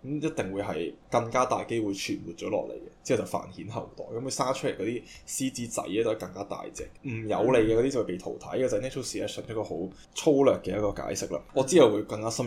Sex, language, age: male, Chinese, 10-29